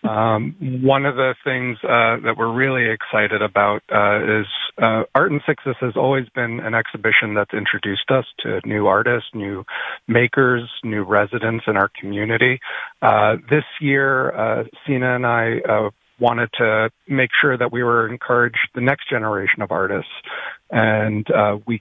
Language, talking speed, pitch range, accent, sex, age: English, 160 wpm, 105-125 Hz, American, male, 40-59